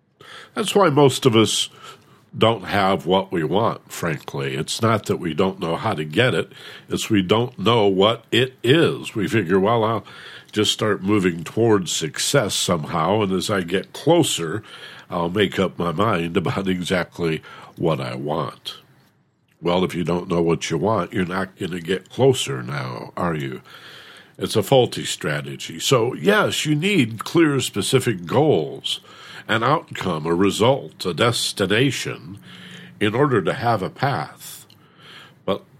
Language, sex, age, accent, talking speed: English, male, 50-69, American, 160 wpm